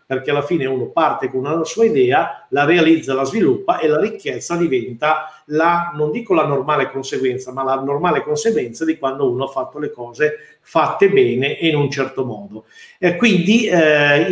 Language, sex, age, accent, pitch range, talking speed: Italian, male, 50-69, native, 135-175 Hz, 185 wpm